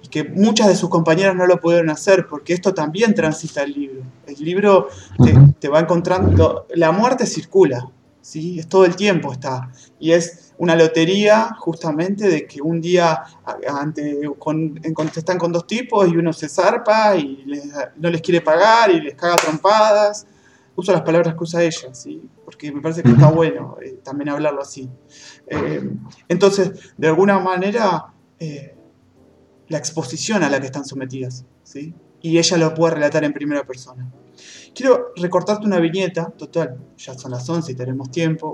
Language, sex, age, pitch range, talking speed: Spanish, male, 20-39, 145-185 Hz, 170 wpm